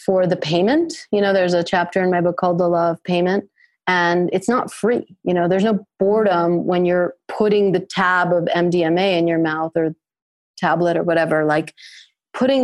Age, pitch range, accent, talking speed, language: 30-49, 170-210 Hz, American, 195 wpm, English